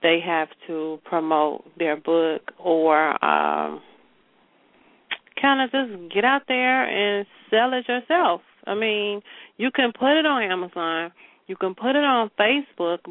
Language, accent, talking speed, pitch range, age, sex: English, American, 145 wpm, 165-210 Hz, 40-59, female